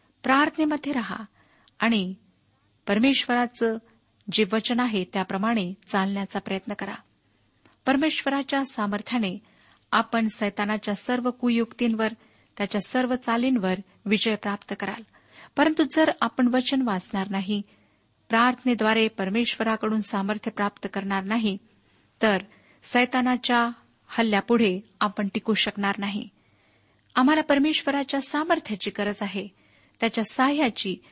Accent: native